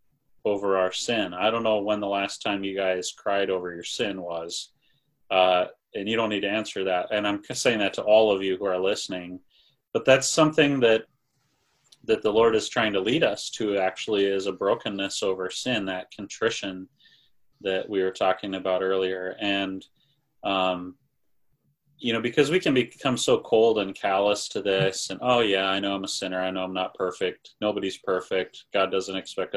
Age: 30-49